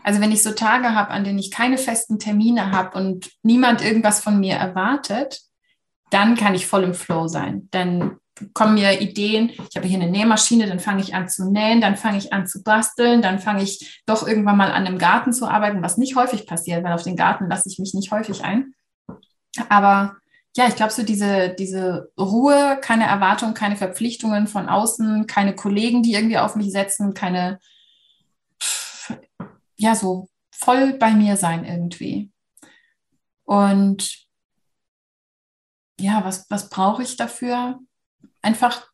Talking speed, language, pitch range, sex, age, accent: 170 wpm, German, 195-230 Hz, female, 20-39, German